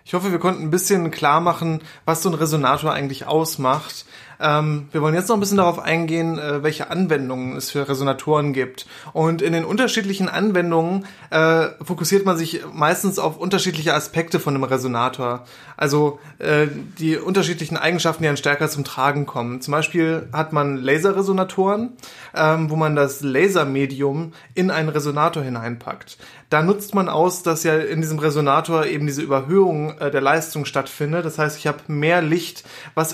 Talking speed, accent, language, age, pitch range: 165 wpm, German, German, 30-49, 145-165 Hz